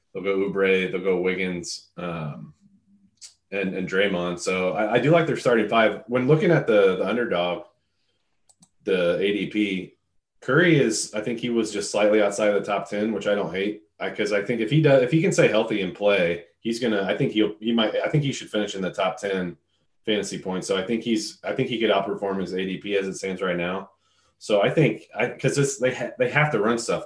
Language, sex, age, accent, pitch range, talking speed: English, male, 30-49, American, 95-120 Hz, 230 wpm